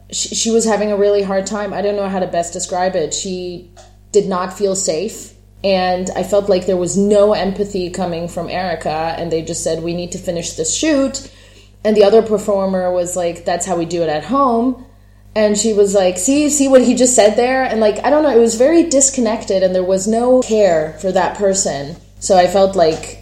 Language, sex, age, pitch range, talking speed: English, female, 30-49, 170-215 Hz, 220 wpm